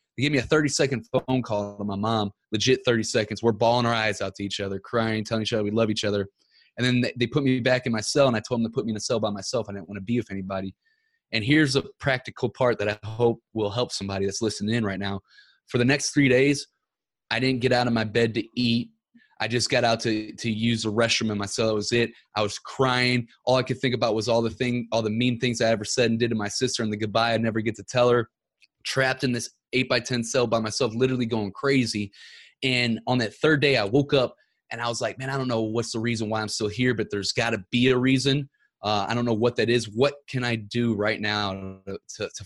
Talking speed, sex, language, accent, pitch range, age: 270 wpm, male, English, American, 110-130 Hz, 20-39